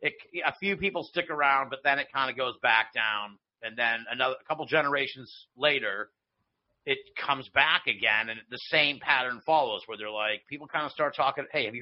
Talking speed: 200 wpm